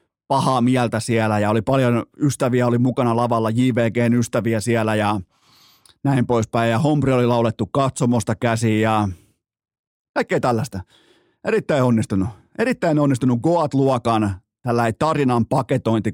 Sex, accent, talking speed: male, native, 125 wpm